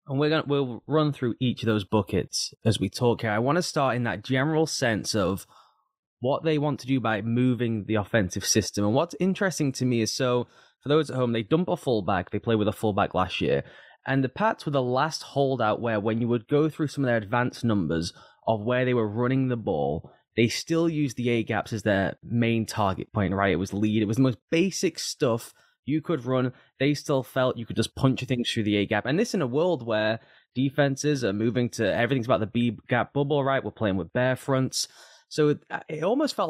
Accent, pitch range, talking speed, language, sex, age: British, 110-140 Hz, 230 wpm, English, male, 10-29